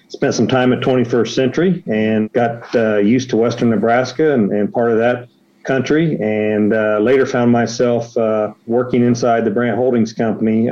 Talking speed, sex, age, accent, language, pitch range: 175 wpm, male, 40-59, American, English, 100-115 Hz